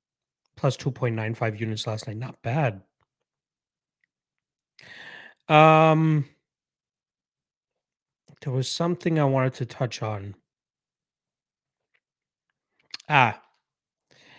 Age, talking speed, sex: 30-49, 70 wpm, male